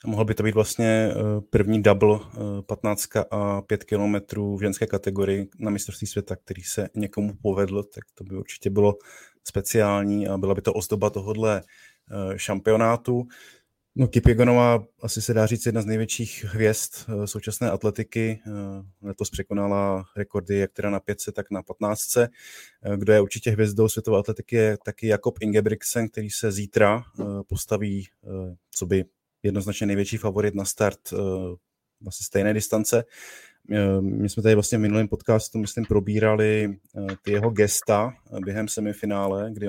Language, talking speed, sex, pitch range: Czech, 145 wpm, male, 100-110 Hz